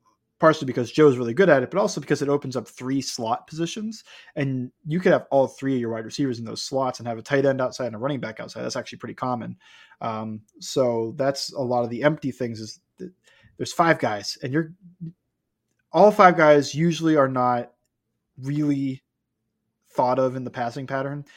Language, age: English, 20-39